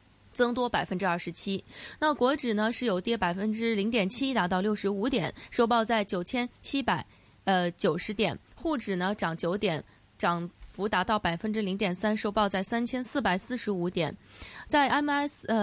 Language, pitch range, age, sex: Chinese, 185-245 Hz, 20-39, female